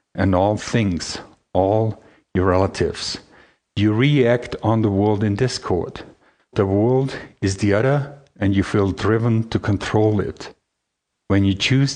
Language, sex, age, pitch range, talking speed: English, male, 50-69, 95-115 Hz, 140 wpm